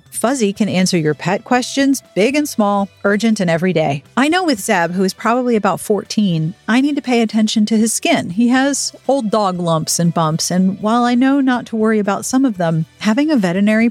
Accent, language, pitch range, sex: American, English, 185-245 Hz, female